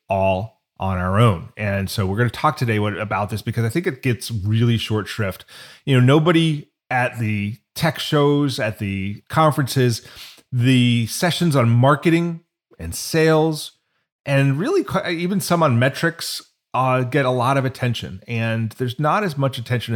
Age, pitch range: 30-49, 110-140 Hz